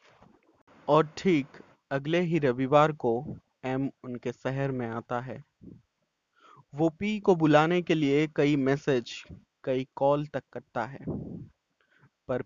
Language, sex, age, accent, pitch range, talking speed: Hindi, male, 20-39, native, 120-145 Hz, 125 wpm